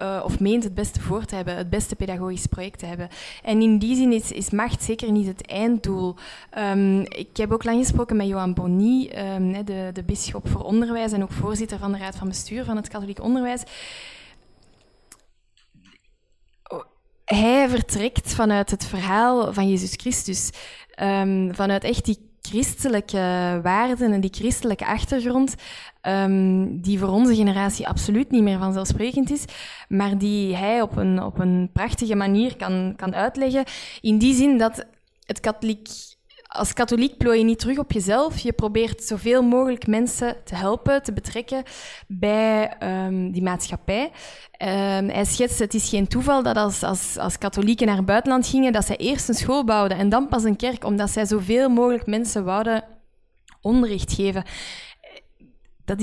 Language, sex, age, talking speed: Dutch, female, 20-39, 160 wpm